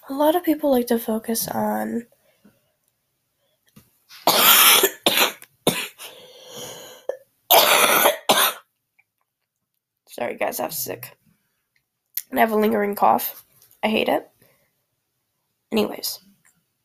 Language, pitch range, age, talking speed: English, 195-270 Hz, 10-29, 80 wpm